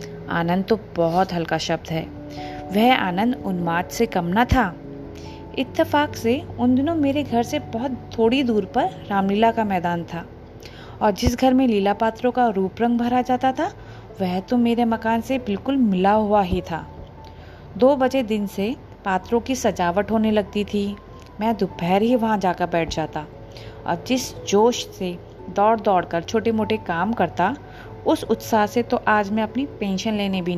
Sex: female